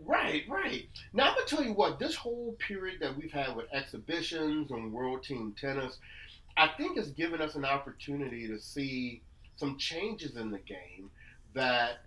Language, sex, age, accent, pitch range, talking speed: English, male, 30-49, American, 110-150 Hz, 180 wpm